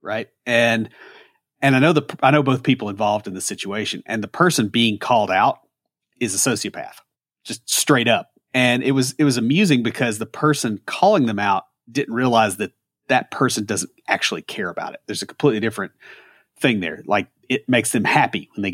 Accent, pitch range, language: American, 105-135 Hz, English